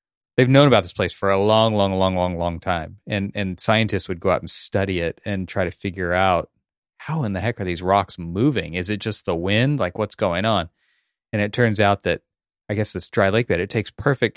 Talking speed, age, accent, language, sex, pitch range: 240 wpm, 30-49, American, English, male, 95-115 Hz